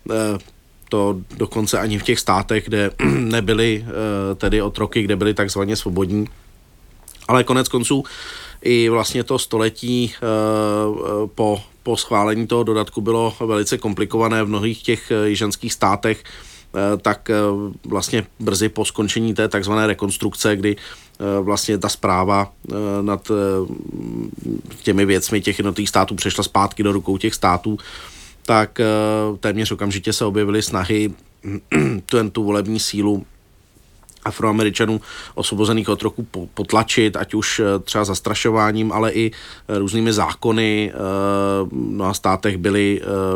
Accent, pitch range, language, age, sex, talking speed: native, 100-110 Hz, Czech, 40-59, male, 115 wpm